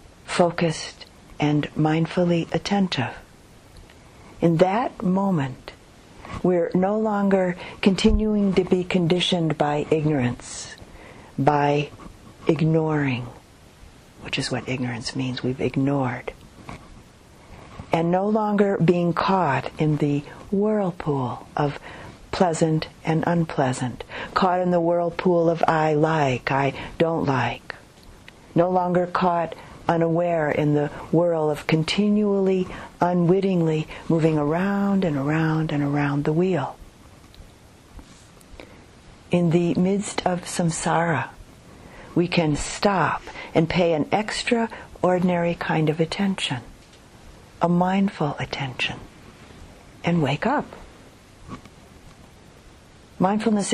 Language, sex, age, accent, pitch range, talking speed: English, female, 50-69, American, 145-180 Hz, 100 wpm